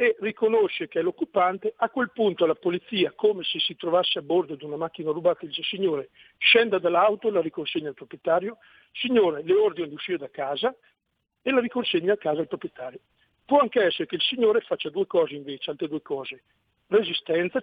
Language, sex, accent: Italian, male, native